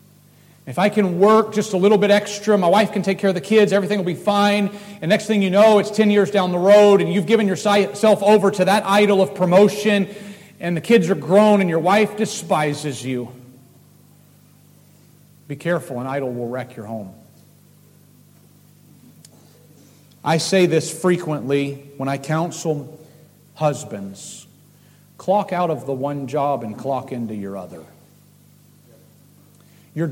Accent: American